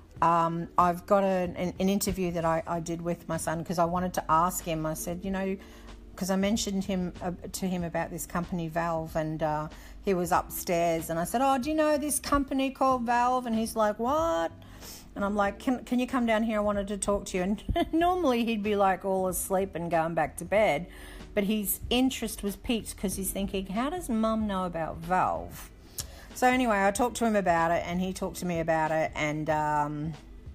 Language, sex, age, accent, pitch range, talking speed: English, female, 50-69, Australian, 160-205 Hz, 220 wpm